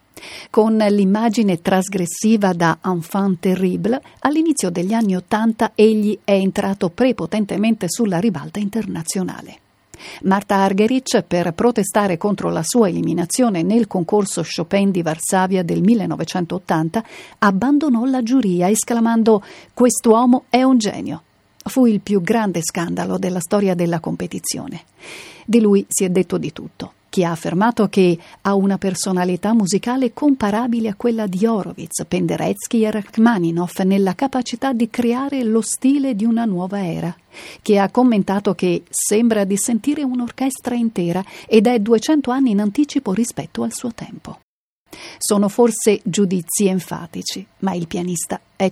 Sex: female